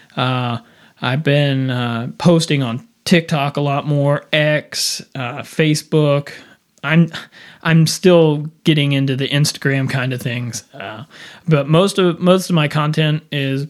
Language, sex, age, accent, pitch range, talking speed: English, male, 30-49, American, 135-165 Hz, 140 wpm